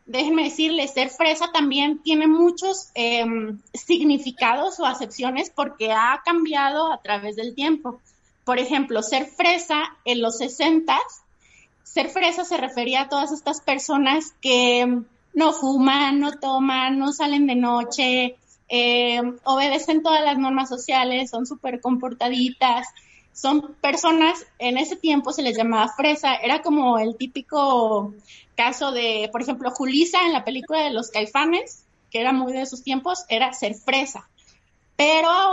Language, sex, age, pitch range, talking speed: Spanish, female, 20-39, 245-295 Hz, 145 wpm